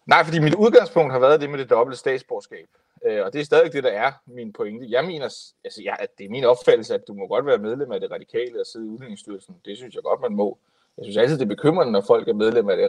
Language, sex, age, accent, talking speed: Danish, male, 30-49, native, 280 wpm